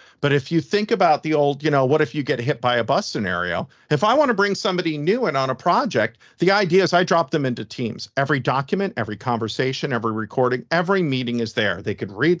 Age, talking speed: 50-69, 240 wpm